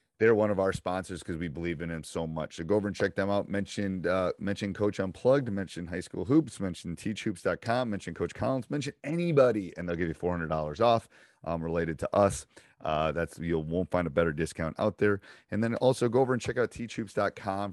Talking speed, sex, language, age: 215 wpm, male, English, 30-49